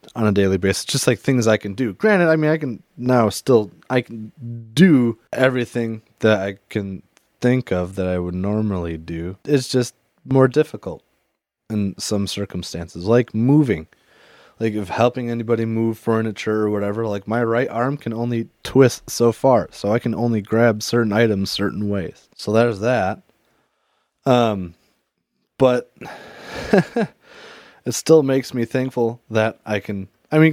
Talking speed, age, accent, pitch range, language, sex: 160 wpm, 20-39, American, 105-125 Hz, English, male